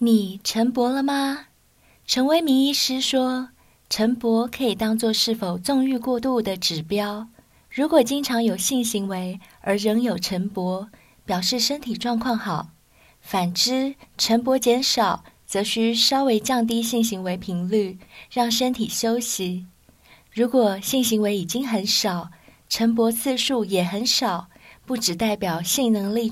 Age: 20-39